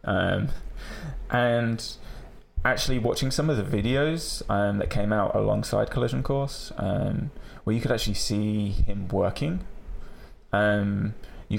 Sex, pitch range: male, 90-115 Hz